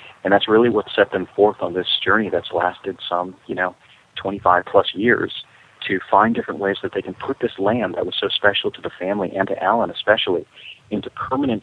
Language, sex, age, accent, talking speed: English, male, 40-59, American, 205 wpm